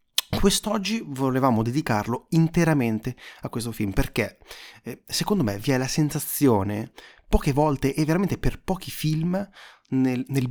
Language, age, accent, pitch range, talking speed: Italian, 30-49, native, 115-160 Hz, 130 wpm